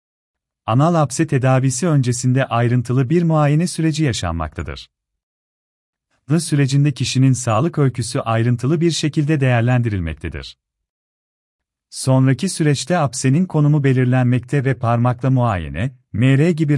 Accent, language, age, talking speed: native, Turkish, 40-59, 95 wpm